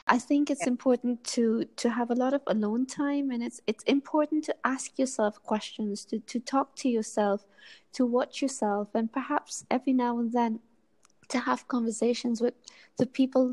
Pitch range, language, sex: 225-260 Hz, English, female